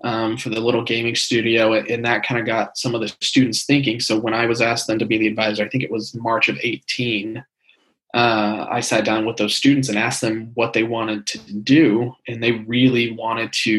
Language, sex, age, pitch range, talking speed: English, male, 20-39, 110-125 Hz, 230 wpm